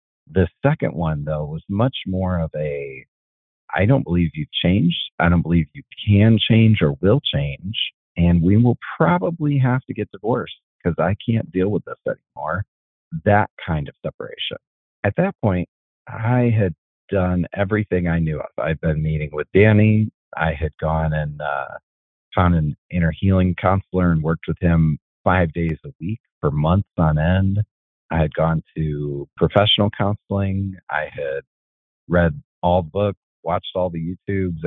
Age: 40-59